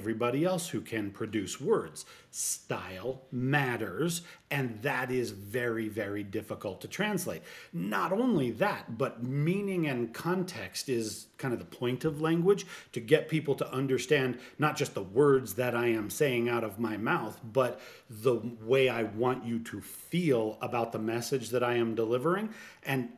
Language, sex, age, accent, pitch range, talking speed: English, male, 40-59, American, 115-150 Hz, 165 wpm